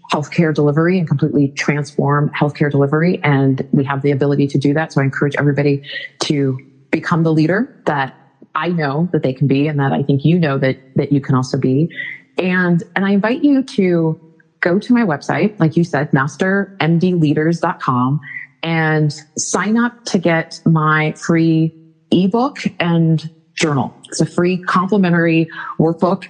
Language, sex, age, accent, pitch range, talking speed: English, female, 30-49, American, 145-180 Hz, 160 wpm